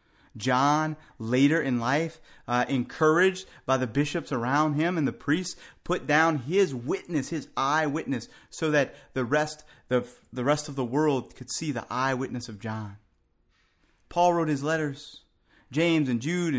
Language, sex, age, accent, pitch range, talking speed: English, male, 30-49, American, 110-150 Hz, 150 wpm